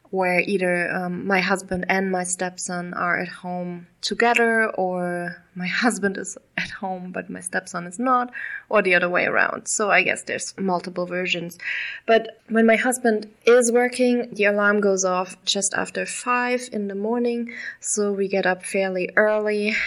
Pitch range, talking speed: 180-210 Hz, 170 wpm